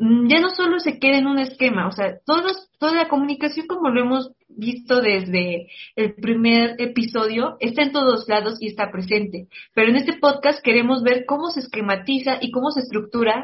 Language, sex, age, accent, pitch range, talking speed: English, female, 30-49, Mexican, 215-270 Hz, 185 wpm